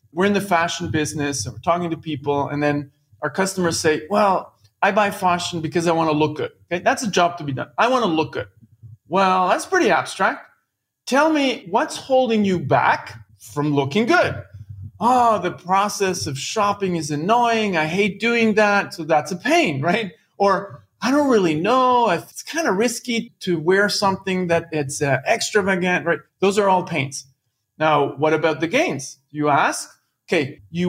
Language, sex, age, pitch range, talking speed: English, male, 30-49, 145-220 Hz, 190 wpm